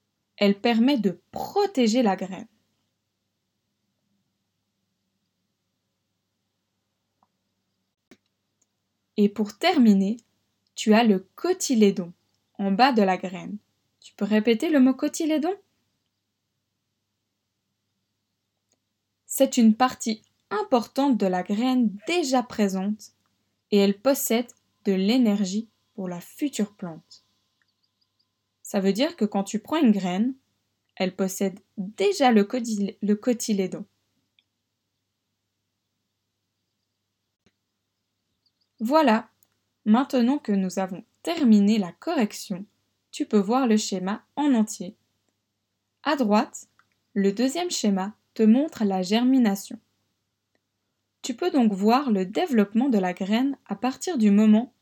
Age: 20-39